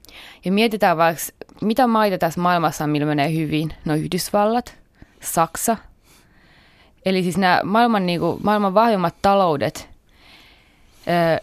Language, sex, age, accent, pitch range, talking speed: Finnish, female, 20-39, native, 155-200 Hz, 125 wpm